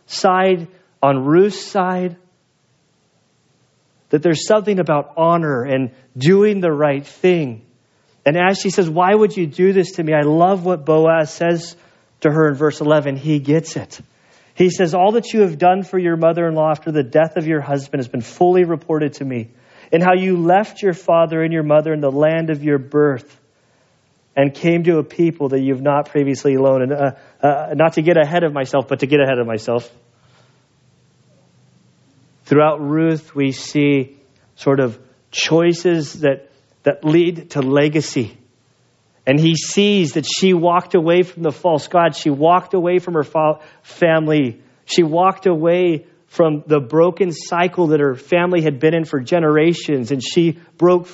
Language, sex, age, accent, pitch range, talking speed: English, male, 40-59, American, 140-175 Hz, 175 wpm